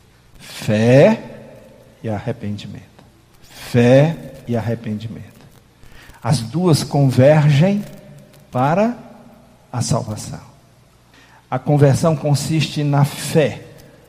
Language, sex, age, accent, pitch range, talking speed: Portuguese, male, 50-69, Brazilian, 115-145 Hz, 70 wpm